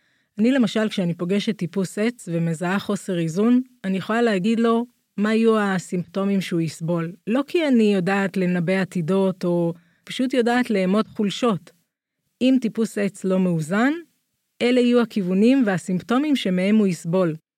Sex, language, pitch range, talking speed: female, Hebrew, 175-230 Hz, 140 wpm